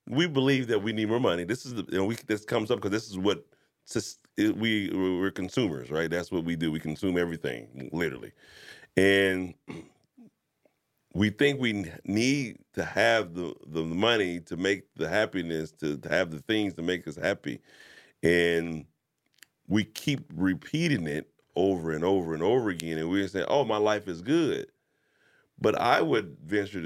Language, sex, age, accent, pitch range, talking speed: English, male, 40-59, American, 85-110 Hz, 185 wpm